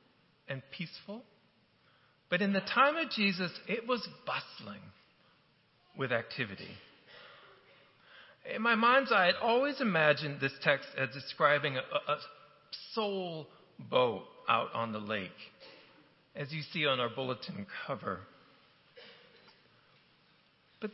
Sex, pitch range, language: male, 135-205 Hz, English